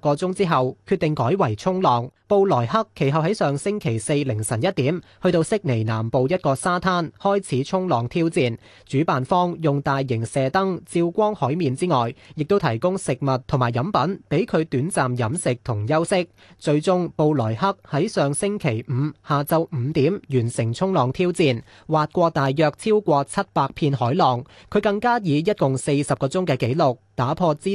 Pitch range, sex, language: 130-180 Hz, male, Chinese